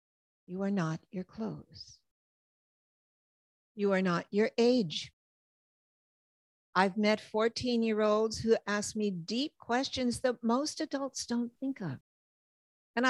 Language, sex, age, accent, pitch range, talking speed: English, female, 60-79, American, 195-250 Hz, 125 wpm